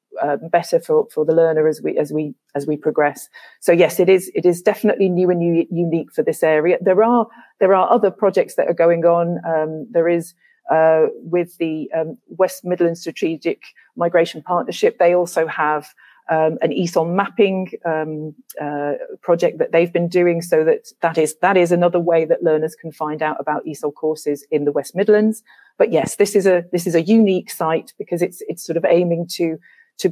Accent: British